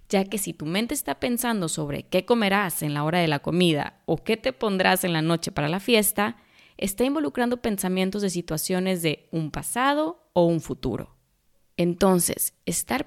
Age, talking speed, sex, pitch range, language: 20-39, 180 wpm, female, 170-230 Hz, Spanish